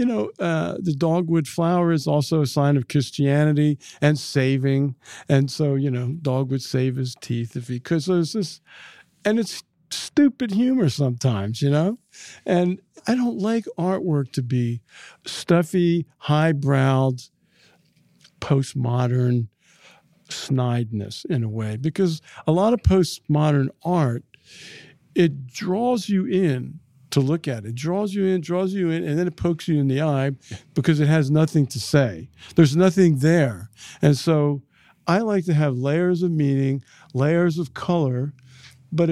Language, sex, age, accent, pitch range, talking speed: English, male, 50-69, American, 135-175 Hz, 155 wpm